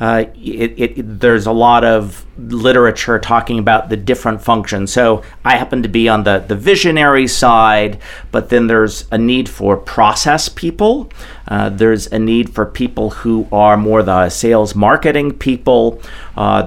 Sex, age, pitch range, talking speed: male, 50-69, 105-120 Hz, 160 wpm